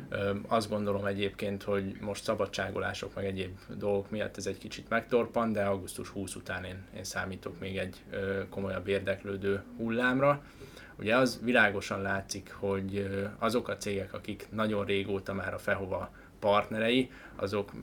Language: Hungarian